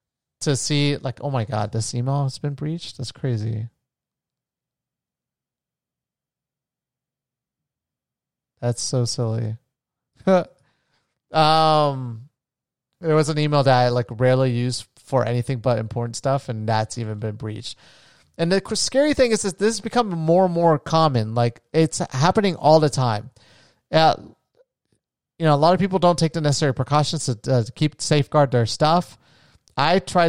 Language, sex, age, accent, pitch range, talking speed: English, male, 30-49, American, 125-160 Hz, 155 wpm